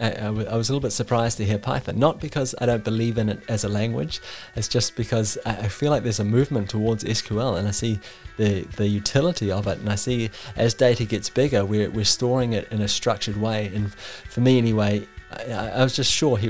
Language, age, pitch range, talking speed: English, 30-49, 105-120 Hz, 240 wpm